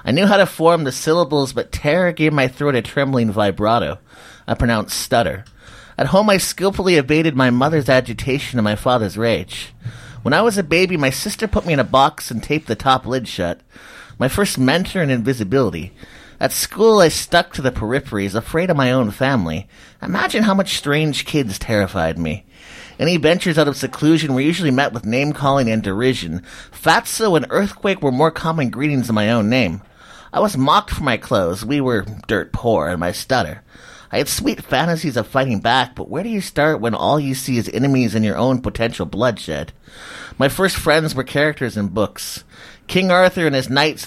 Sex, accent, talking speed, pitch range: male, American, 195 wpm, 115-155 Hz